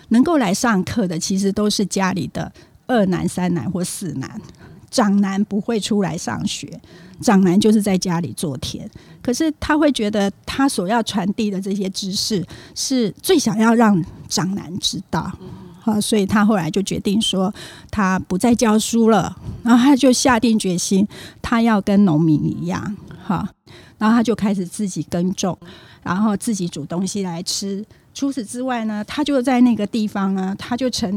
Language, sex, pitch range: Chinese, female, 190-230 Hz